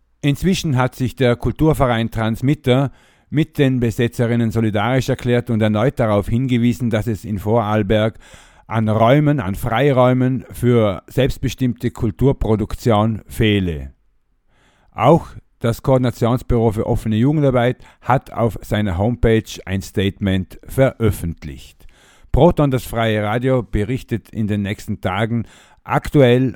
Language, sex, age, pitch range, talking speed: German, male, 50-69, 100-125 Hz, 115 wpm